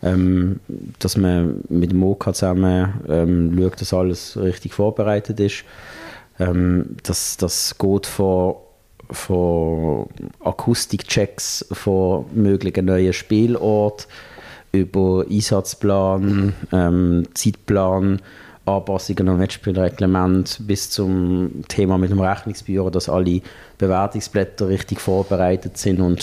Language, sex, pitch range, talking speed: German, male, 95-110 Hz, 100 wpm